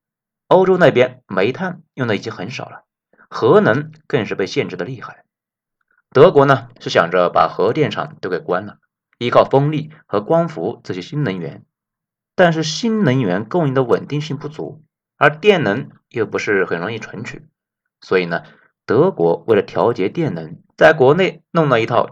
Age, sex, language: 30-49, male, Chinese